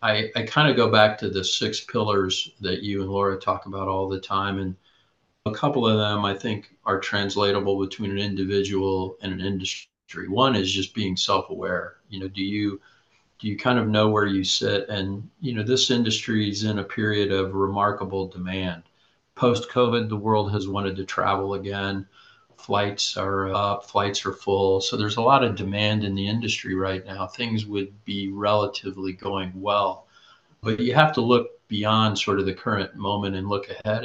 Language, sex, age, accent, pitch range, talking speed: English, male, 40-59, American, 95-110 Hz, 190 wpm